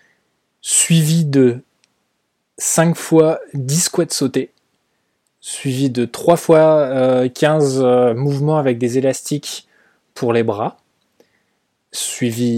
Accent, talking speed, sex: French, 95 wpm, male